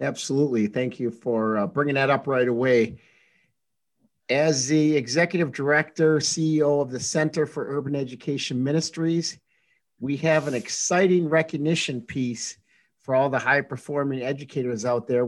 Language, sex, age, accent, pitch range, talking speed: English, male, 50-69, American, 130-155 Hz, 135 wpm